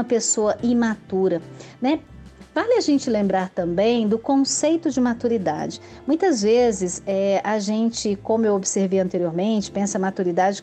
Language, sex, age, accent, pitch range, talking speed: Portuguese, female, 40-59, Brazilian, 195-245 Hz, 130 wpm